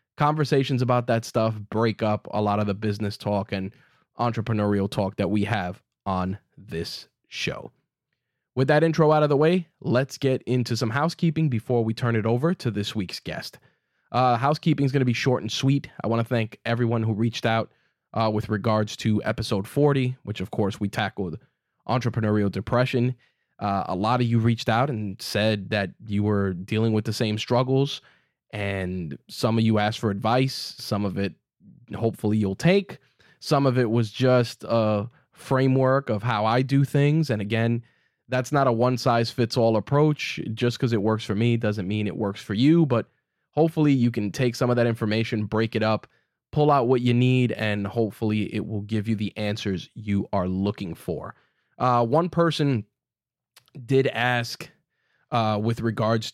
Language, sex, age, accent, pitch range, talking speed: English, male, 20-39, American, 105-130 Hz, 185 wpm